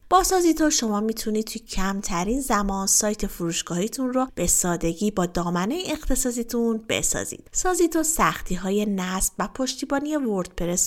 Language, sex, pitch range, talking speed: Persian, female, 185-255 Hz, 125 wpm